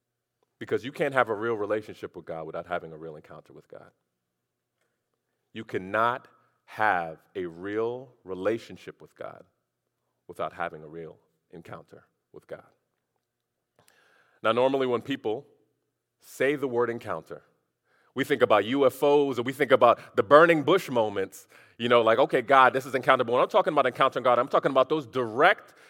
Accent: American